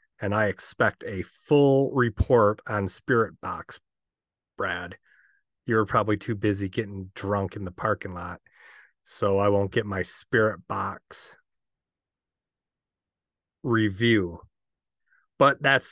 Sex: male